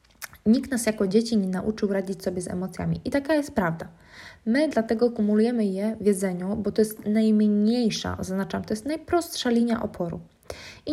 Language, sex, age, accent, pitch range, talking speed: Polish, female, 20-39, native, 195-220 Hz, 170 wpm